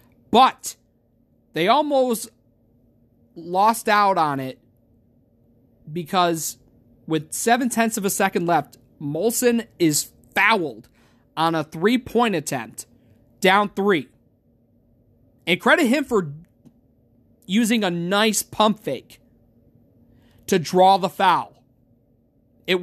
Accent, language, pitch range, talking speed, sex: American, English, 120-195 Hz, 95 wpm, male